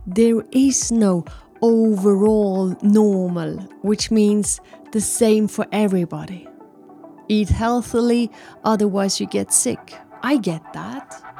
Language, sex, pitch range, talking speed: English, female, 190-235 Hz, 105 wpm